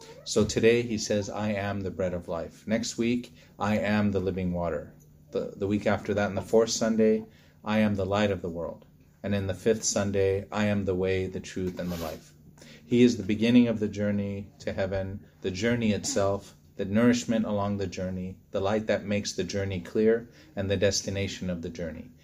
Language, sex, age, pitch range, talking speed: English, male, 30-49, 95-110 Hz, 210 wpm